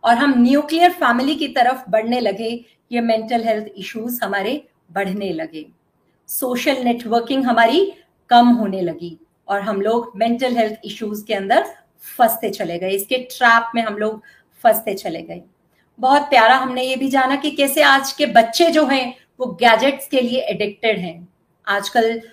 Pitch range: 220-285 Hz